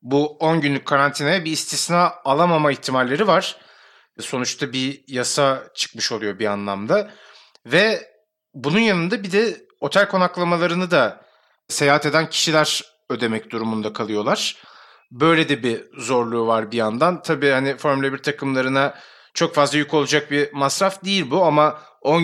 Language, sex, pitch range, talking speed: Turkish, male, 125-160 Hz, 140 wpm